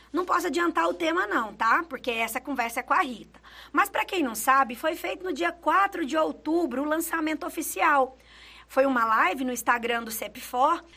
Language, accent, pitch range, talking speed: Portuguese, Brazilian, 260-320 Hz, 195 wpm